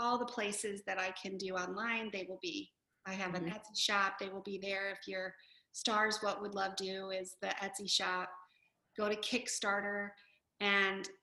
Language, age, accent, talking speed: English, 40-59, American, 190 wpm